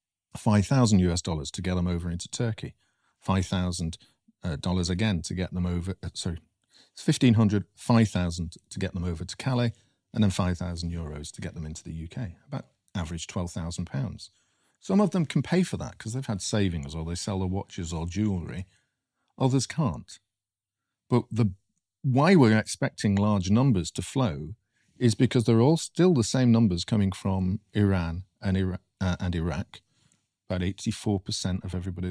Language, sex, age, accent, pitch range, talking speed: English, male, 40-59, British, 90-115 Hz, 170 wpm